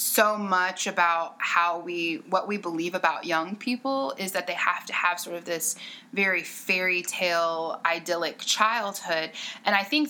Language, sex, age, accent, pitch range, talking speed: English, female, 20-39, American, 165-215 Hz, 165 wpm